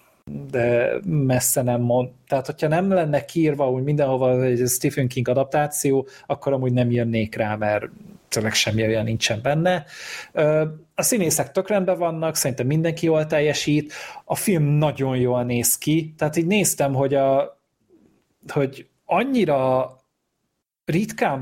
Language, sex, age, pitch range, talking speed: Hungarian, male, 30-49, 135-175 Hz, 135 wpm